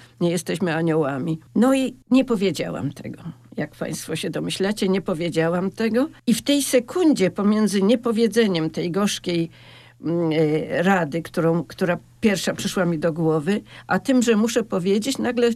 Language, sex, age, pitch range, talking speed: Polish, female, 50-69, 185-235 Hz, 140 wpm